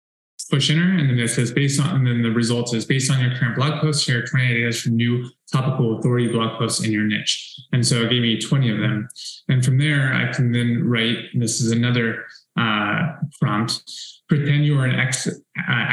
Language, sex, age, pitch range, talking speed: English, male, 20-39, 120-145 Hz, 215 wpm